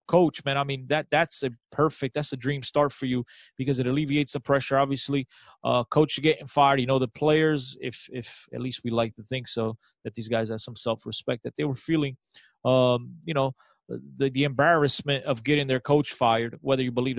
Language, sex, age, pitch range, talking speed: English, male, 20-39, 125-150 Hz, 215 wpm